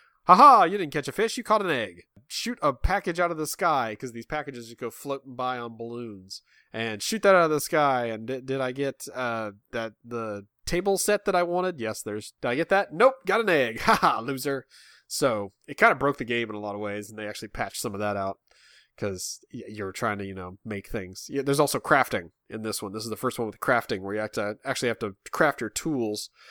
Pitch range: 105-140 Hz